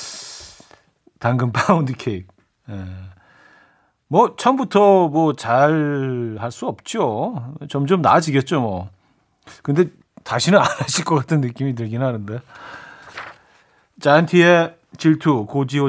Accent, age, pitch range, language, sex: native, 40-59, 115-160 Hz, Korean, male